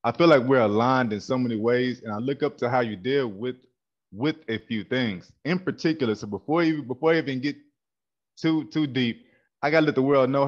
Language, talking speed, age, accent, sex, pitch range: English, 230 wpm, 20-39, American, male, 110-135 Hz